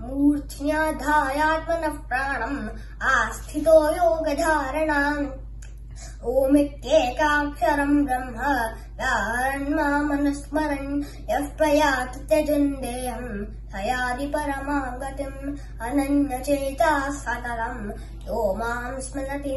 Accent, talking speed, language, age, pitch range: native, 35 wpm, Hindi, 20-39, 260-295 Hz